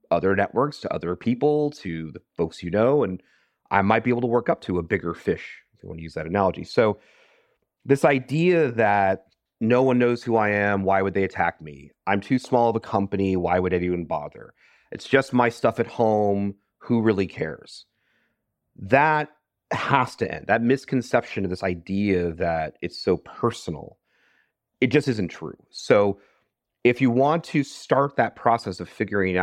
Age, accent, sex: 30-49, American, male